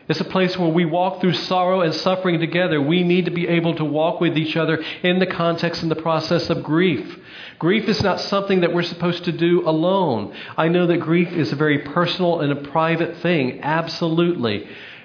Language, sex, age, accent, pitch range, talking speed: English, male, 40-59, American, 125-160 Hz, 205 wpm